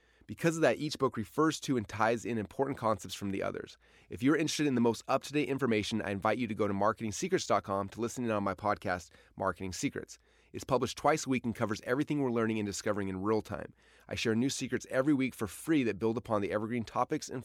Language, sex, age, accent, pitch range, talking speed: English, male, 30-49, American, 95-125 Hz, 235 wpm